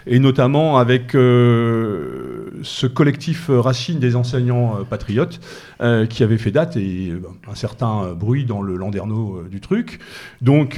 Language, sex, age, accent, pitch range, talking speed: French, male, 40-59, French, 110-135 Hz, 155 wpm